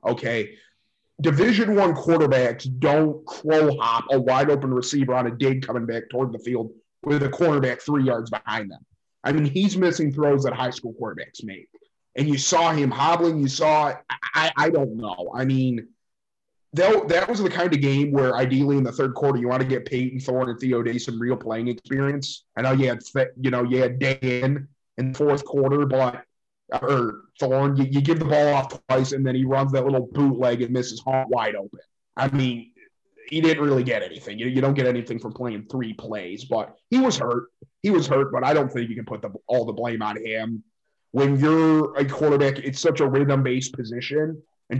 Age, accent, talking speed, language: 30-49, American, 210 wpm, English